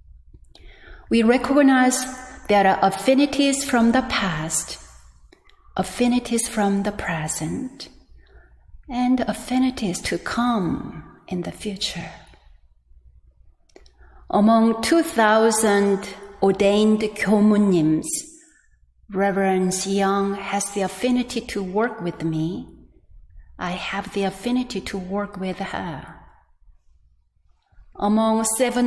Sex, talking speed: female, 85 wpm